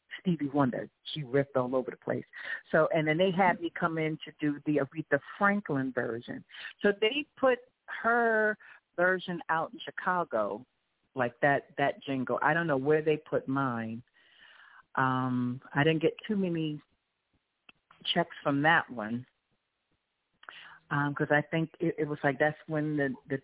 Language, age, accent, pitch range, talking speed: English, 40-59, American, 135-170 Hz, 160 wpm